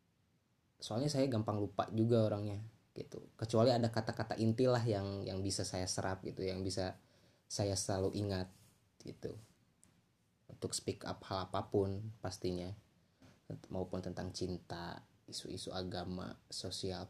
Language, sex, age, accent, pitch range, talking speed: Indonesian, male, 20-39, native, 95-110 Hz, 125 wpm